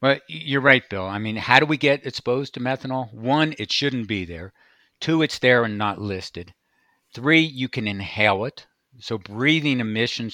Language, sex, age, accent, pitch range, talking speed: English, male, 50-69, American, 105-130 Hz, 185 wpm